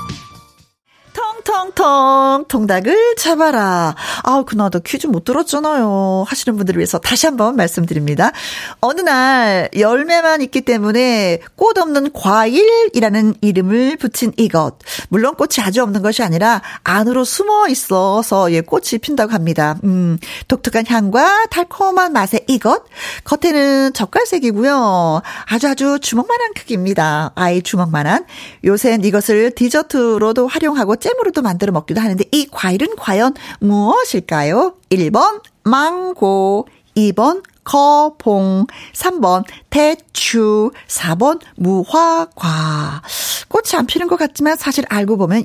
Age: 40-59